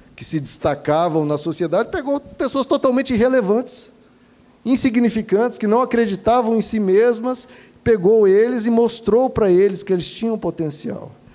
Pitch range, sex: 155-220 Hz, male